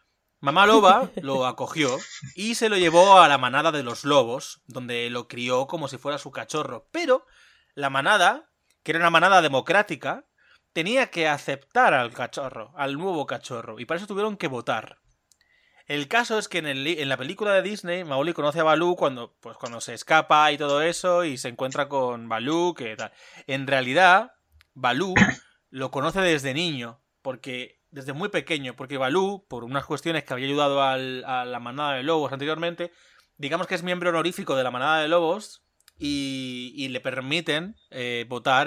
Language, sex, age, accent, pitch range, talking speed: Spanish, male, 30-49, Spanish, 130-175 Hz, 175 wpm